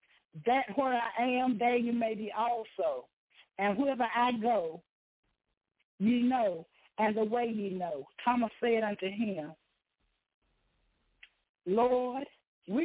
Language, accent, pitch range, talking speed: English, American, 190-235 Hz, 120 wpm